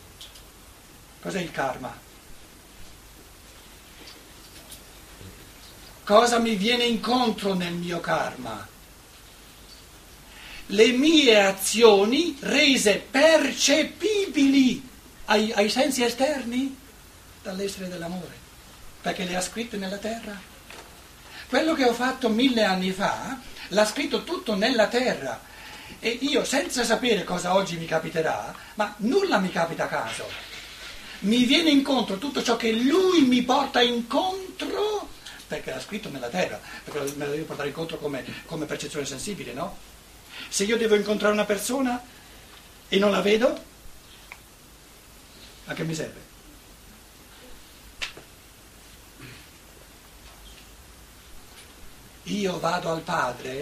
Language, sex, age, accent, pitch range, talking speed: Italian, male, 60-79, native, 160-250 Hz, 110 wpm